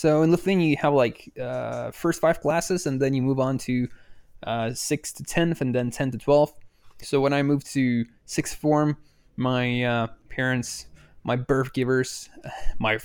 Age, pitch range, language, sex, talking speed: 20-39, 125-155 Hz, English, male, 180 wpm